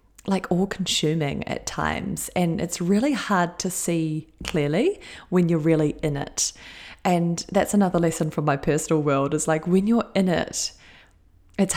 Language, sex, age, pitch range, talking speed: English, female, 20-39, 160-195 Hz, 165 wpm